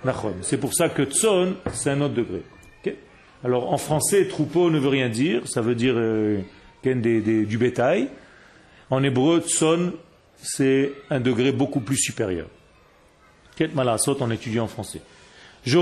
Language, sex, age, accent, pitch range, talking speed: French, male, 40-59, French, 130-175 Hz, 165 wpm